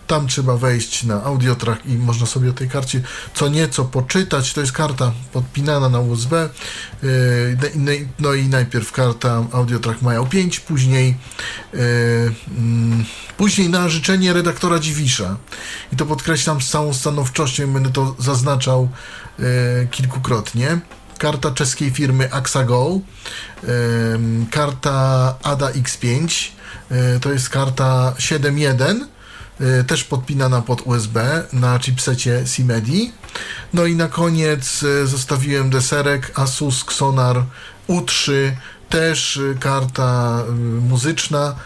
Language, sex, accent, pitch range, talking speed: Polish, male, native, 125-150 Hz, 105 wpm